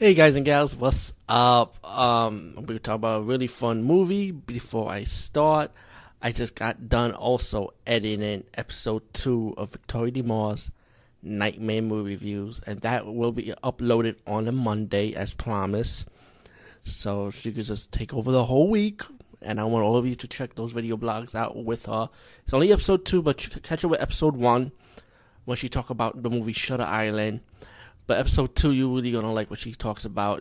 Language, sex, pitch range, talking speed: English, male, 110-130 Hz, 195 wpm